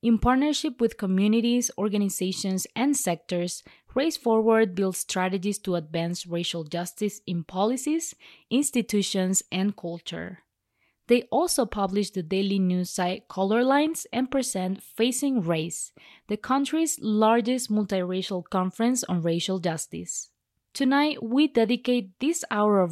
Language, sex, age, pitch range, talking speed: English, female, 20-39, 185-235 Hz, 125 wpm